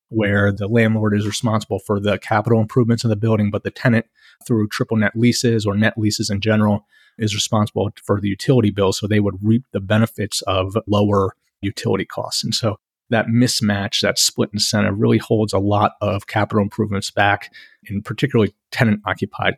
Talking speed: 180 wpm